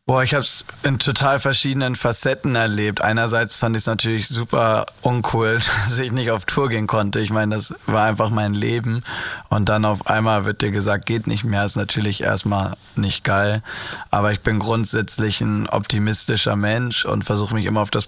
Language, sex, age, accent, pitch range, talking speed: German, male, 20-39, German, 105-115 Hz, 195 wpm